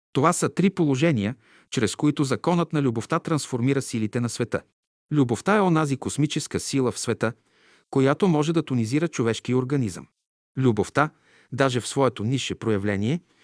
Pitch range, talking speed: 115-155 Hz, 145 wpm